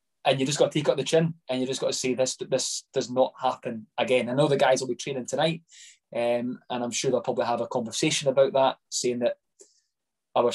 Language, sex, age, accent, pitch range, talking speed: English, male, 20-39, British, 125-160 Hz, 245 wpm